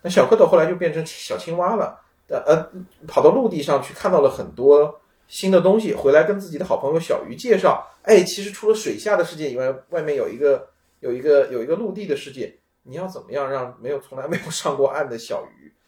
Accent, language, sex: native, Chinese, male